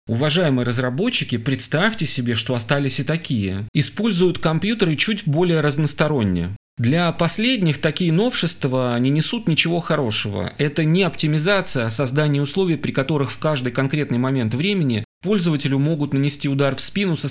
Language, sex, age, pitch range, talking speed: Russian, male, 30-49, 120-160 Hz, 140 wpm